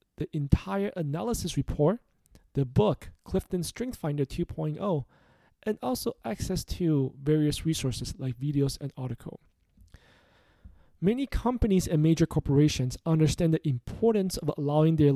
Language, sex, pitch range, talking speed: English, male, 140-180 Hz, 125 wpm